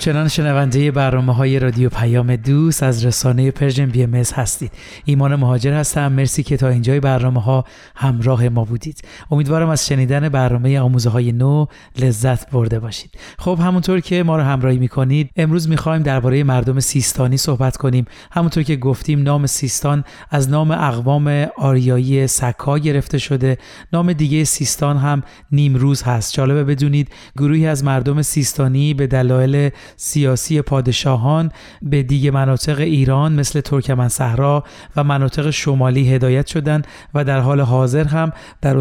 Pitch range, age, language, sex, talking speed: 130-150 Hz, 40-59, Persian, male, 145 wpm